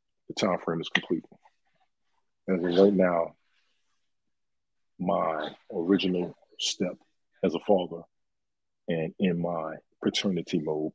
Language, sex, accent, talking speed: English, male, American, 105 wpm